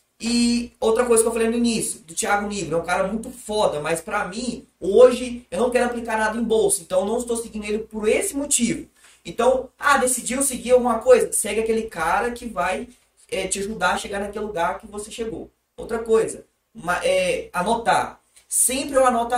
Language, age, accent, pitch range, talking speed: Portuguese, 20-39, Brazilian, 200-245 Hz, 200 wpm